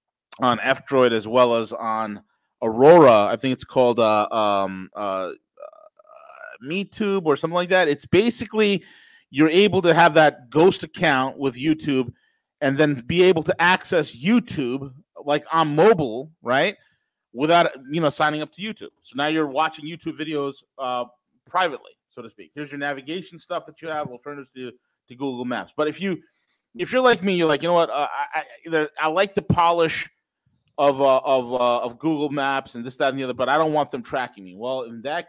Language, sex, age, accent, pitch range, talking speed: English, male, 30-49, American, 125-165 Hz, 195 wpm